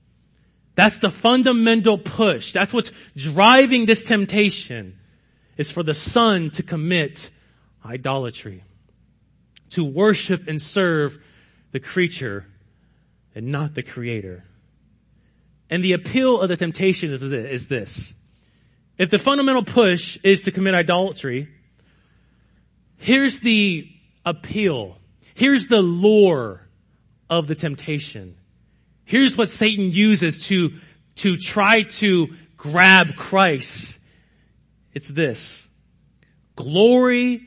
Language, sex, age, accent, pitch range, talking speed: English, male, 30-49, American, 140-210 Hz, 100 wpm